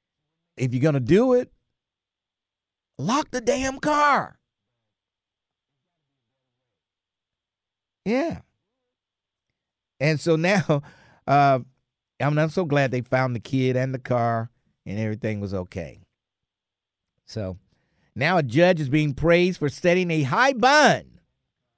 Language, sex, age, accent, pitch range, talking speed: English, male, 50-69, American, 125-180 Hz, 115 wpm